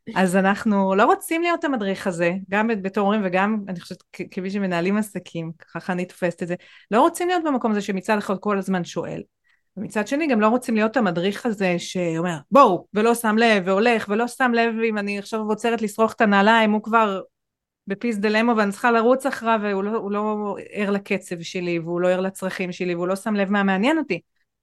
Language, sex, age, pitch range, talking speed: Hebrew, female, 30-49, 190-235 Hz, 95 wpm